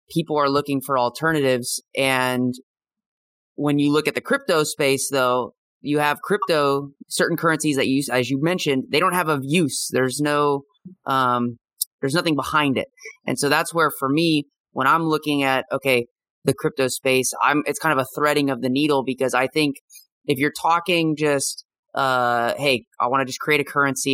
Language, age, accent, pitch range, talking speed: English, 20-39, American, 130-155 Hz, 185 wpm